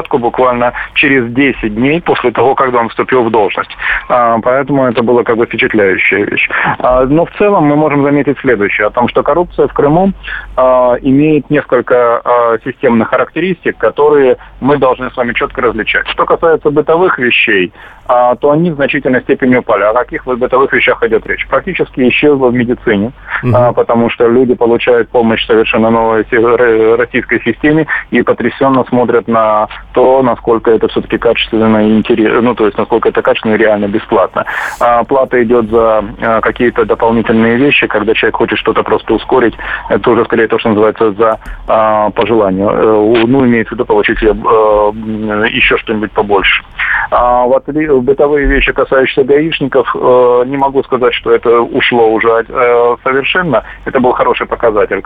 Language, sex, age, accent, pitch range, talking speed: Russian, male, 30-49, native, 115-145 Hz, 160 wpm